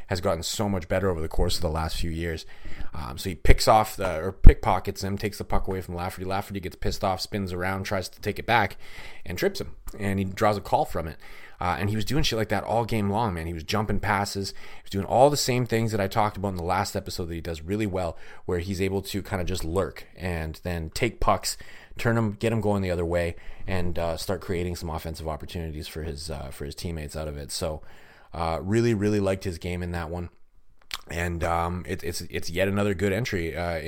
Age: 30-49